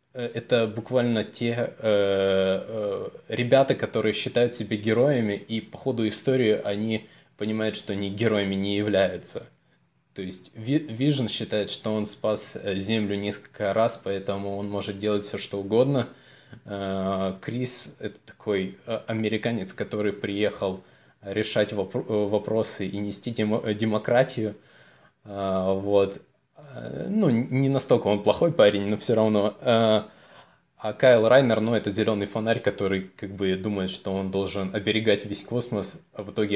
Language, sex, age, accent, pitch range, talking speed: Russian, male, 20-39, native, 100-115 Hz, 130 wpm